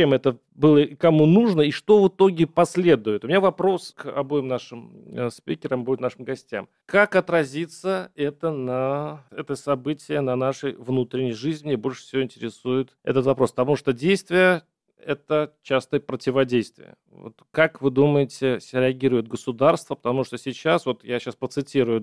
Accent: native